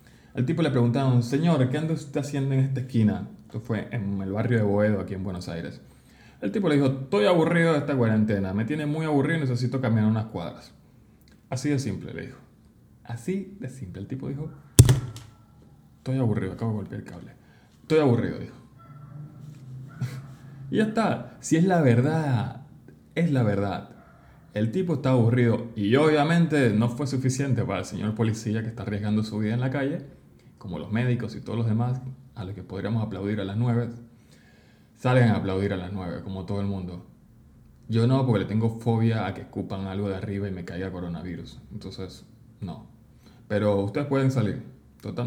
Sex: male